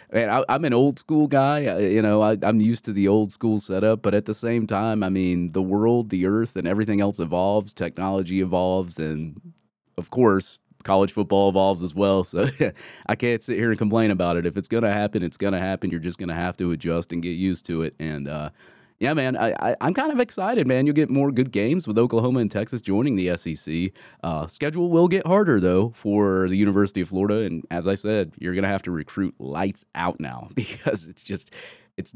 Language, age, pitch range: English, 30-49, 85-105 Hz